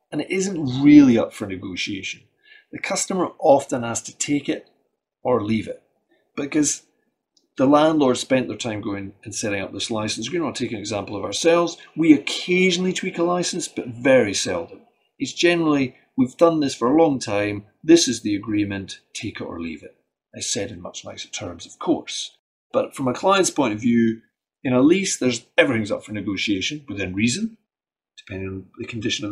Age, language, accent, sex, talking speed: 30-49, English, British, male, 190 wpm